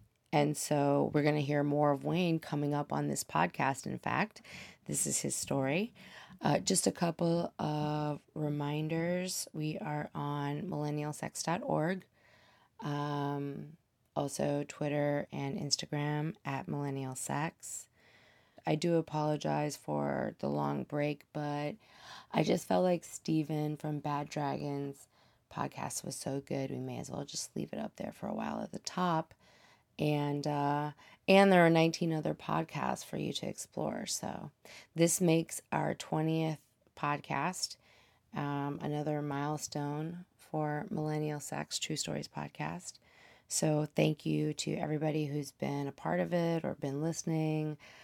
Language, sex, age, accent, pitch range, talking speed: English, female, 20-39, American, 145-165 Hz, 140 wpm